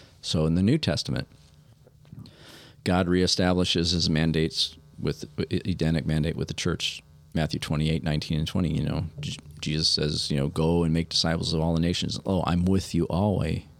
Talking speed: 180 wpm